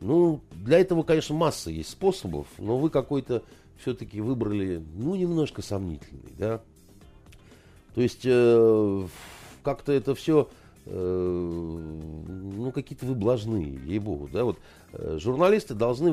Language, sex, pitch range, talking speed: Russian, male, 105-155 Hz, 125 wpm